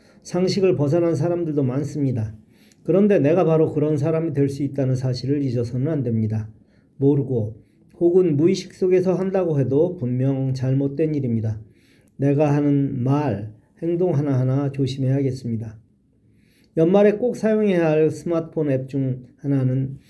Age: 40-59